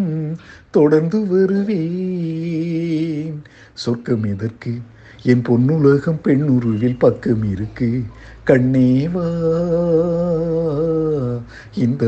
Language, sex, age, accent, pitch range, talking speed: Tamil, male, 60-79, native, 125-205 Hz, 55 wpm